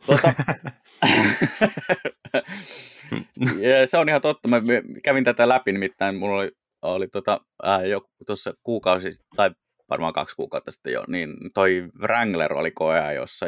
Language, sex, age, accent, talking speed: Finnish, male, 20-39, native, 125 wpm